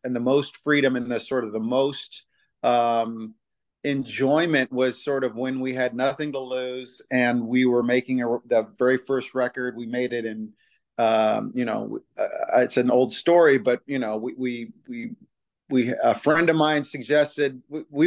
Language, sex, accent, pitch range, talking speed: English, male, American, 115-135 Hz, 185 wpm